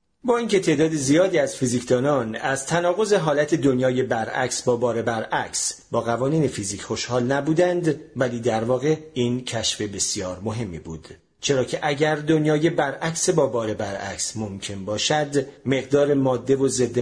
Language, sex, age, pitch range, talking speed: Persian, male, 40-59, 115-160 Hz, 145 wpm